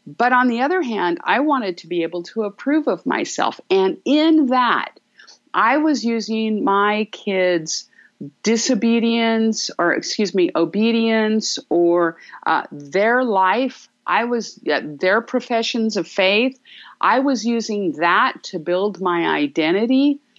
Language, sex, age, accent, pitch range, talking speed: English, female, 50-69, American, 190-280 Hz, 135 wpm